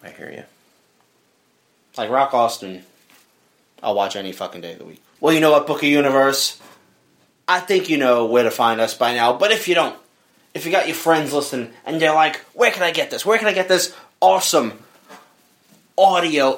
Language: English